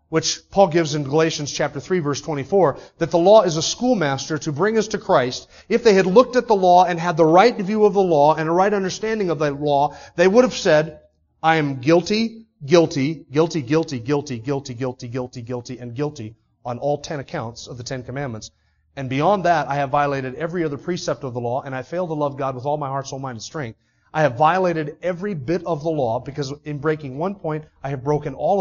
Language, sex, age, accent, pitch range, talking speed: English, male, 30-49, American, 140-180 Hz, 230 wpm